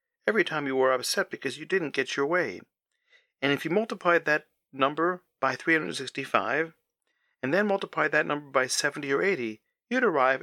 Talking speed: 175 wpm